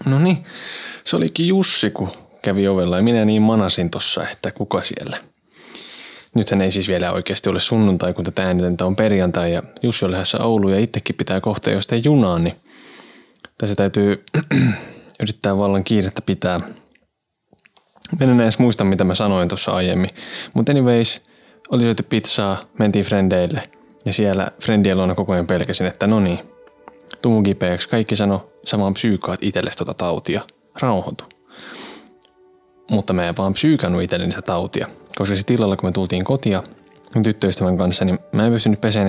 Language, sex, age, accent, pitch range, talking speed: Finnish, male, 20-39, native, 95-115 Hz, 155 wpm